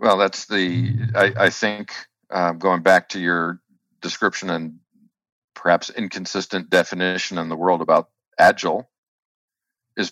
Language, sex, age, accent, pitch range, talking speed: English, male, 50-69, American, 85-115 Hz, 130 wpm